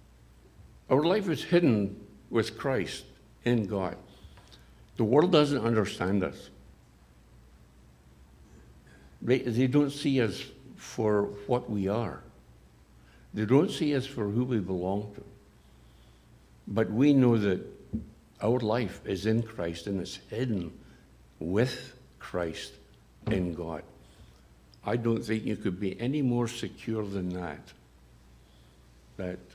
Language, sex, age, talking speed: English, male, 60-79, 120 wpm